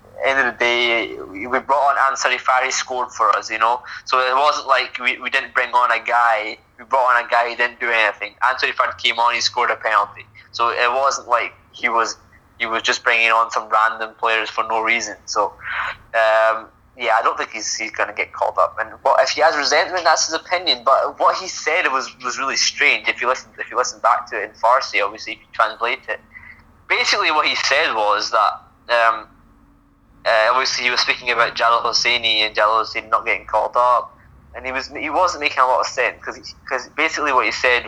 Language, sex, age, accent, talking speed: English, male, 20-39, British, 225 wpm